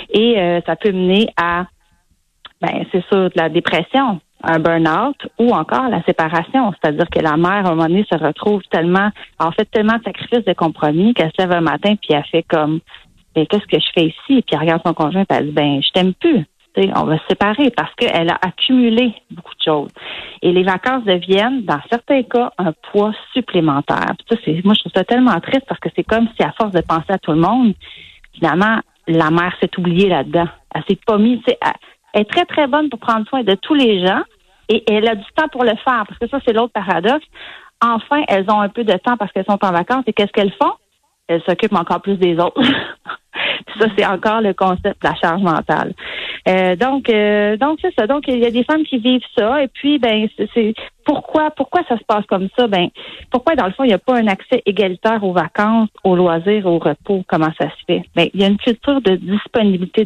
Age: 30-49